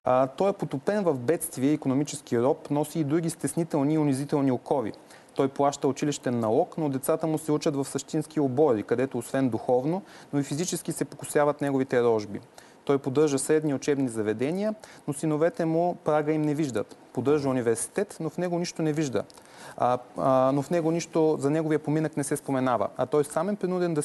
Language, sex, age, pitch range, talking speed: Bulgarian, male, 30-49, 130-160 Hz, 190 wpm